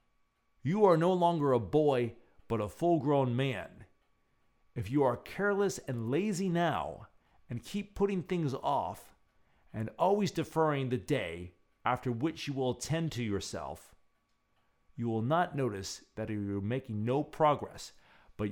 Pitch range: 110-170 Hz